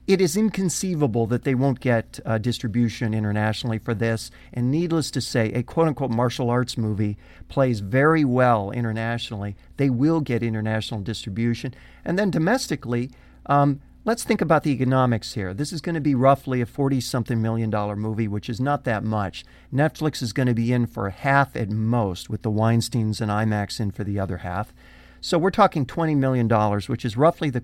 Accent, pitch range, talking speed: American, 110-145 Hz, 185 wpm